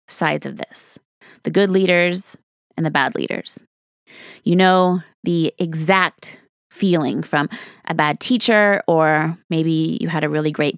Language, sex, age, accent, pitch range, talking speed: English, female, 30-49, American, 170-255 Hz, 145 wpm